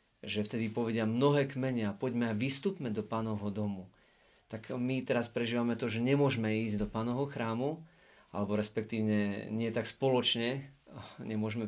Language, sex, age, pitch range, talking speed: Slovak, male, 40-59, 110-130 Hz, 145 wpm